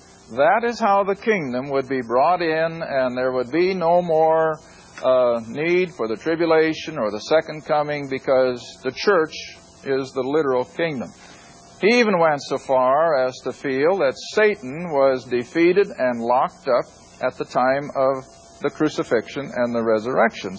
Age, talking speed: 50-69, 160 wpm